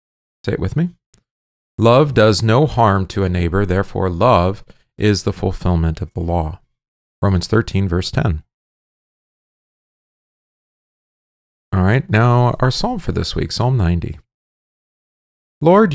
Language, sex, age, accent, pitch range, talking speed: English, male, 40-59, American, 90-115 Hz, 125 wpm